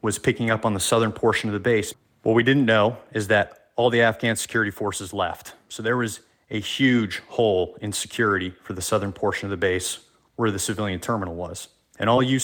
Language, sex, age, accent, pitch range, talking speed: English, male, 30-49, American, 100-120 Hz, 215 wpm